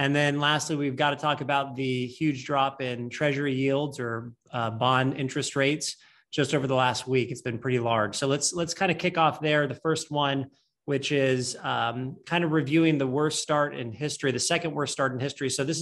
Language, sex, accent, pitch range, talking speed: English, male, American, 130-155 Hz, 220 wpm